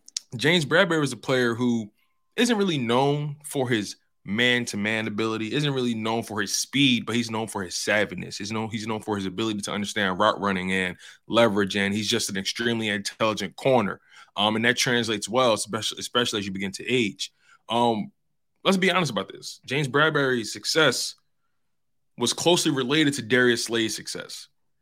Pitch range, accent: 105-140 Hz, American